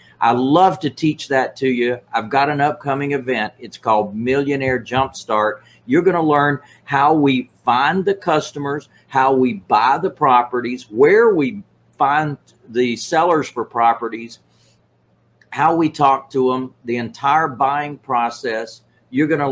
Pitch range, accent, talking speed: 125-150 Hz, American, 150 wpm